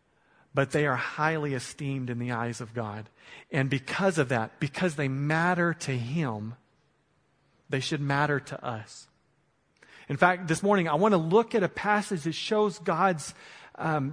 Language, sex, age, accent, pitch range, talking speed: English, male, 40-59, American, 145-180 Hz, 165 wpm